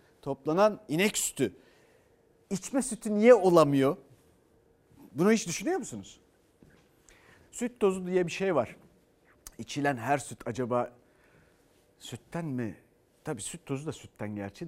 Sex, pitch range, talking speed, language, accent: male, 120-170 Hz, 120 wpm, Turkish, native